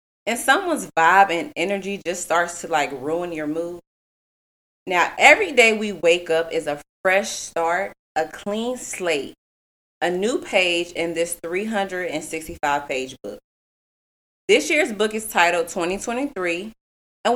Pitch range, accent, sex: 165-225 Hz, American, female